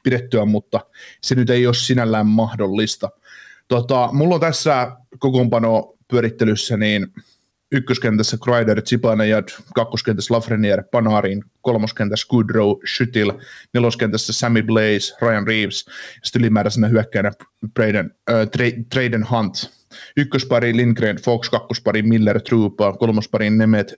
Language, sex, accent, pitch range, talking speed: Finnish, male, native, 105-125 Hz, 105 wpm